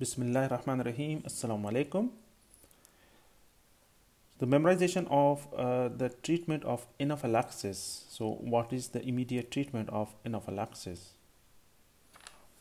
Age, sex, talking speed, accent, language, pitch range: 30-49, male, 90 wpm, Indian, English, 115-150 Hz